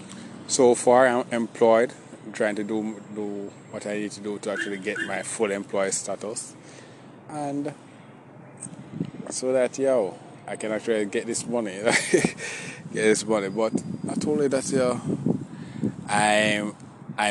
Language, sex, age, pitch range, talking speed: English, male, 20-39, 105-130 Hz, 140 wpm